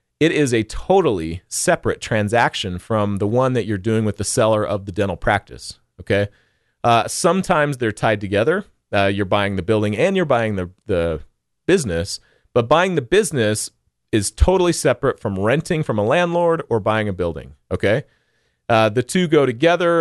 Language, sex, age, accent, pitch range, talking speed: English, male, 40-59, American, 105-145 Hz, 175 wpm